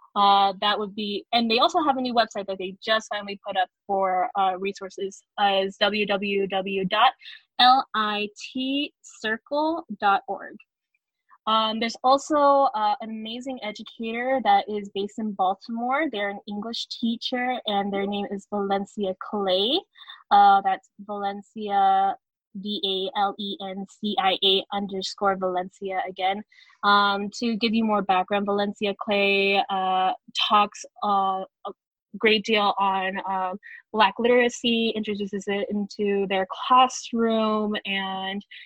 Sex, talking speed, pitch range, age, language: female, 115 wpm, 200-235 Hz, 10-29, English